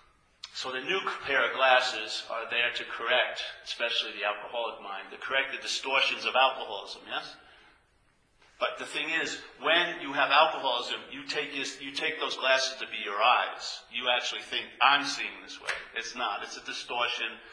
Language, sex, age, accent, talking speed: English, male, 50-69, American, 180 wpm